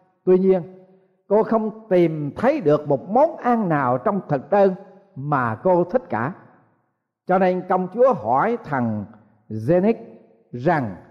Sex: male